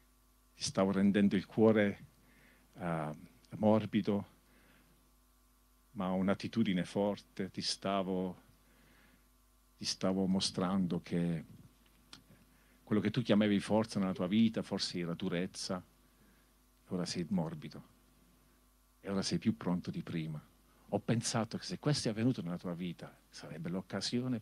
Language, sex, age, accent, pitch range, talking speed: Italian, male, 50-69, native, 95-130 Hz, 120 wpm